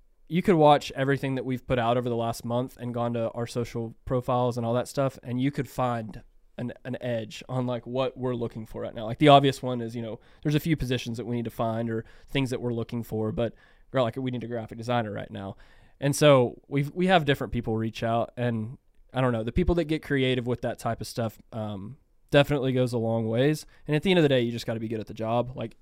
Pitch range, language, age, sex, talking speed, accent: 115-140 Hz, English, 20-39, male, 265 wpm, American